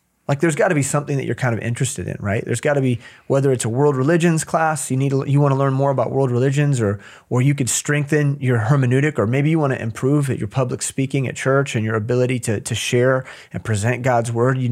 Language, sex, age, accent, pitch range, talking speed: English, male, 30-49, American, 115-140 Hz, 245 wpm